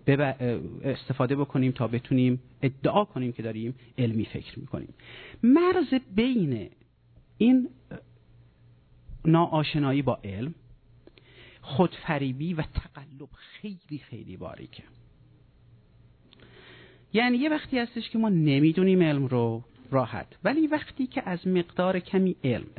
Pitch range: 125-190 Hz